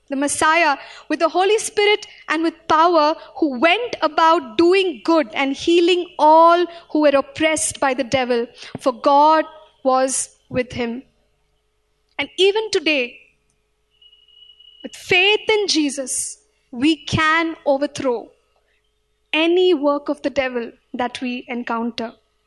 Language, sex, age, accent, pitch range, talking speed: English, female, 20-39, Indian, 265-340 Hz, 125 wpm